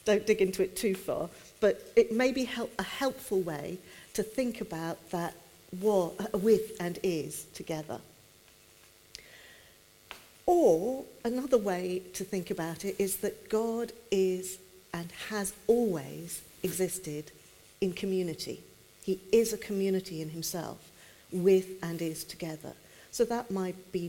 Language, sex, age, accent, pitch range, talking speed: English, female, 50-69, British, 160-195 Hz, 130 wpm